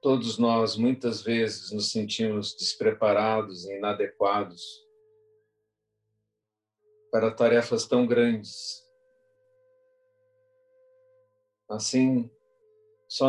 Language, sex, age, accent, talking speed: Portuguese, male, 50-69, Brazilian, 70 wpm